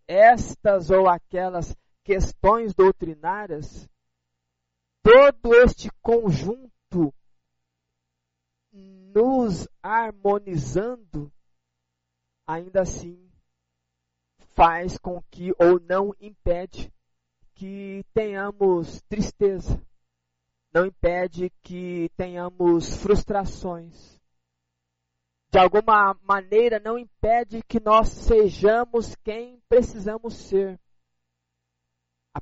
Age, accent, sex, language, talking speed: 20-39, Brazilian, male, Portuguese, 70 wpm